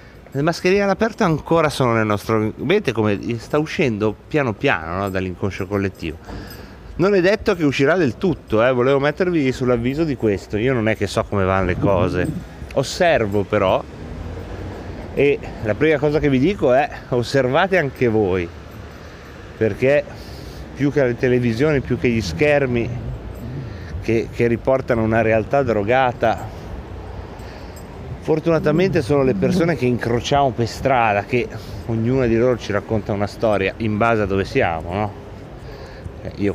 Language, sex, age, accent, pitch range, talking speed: Italian, male, 30-49, native, 100-130 Hz, 145 wpm